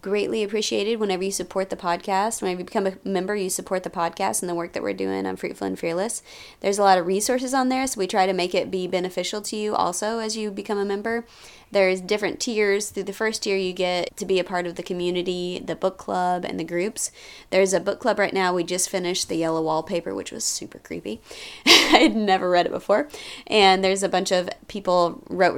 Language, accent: English, American